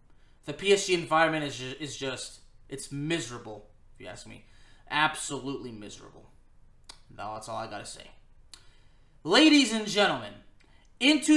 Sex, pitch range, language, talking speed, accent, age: male, 170-230 Hz, English, 125 wpm, American, 20-39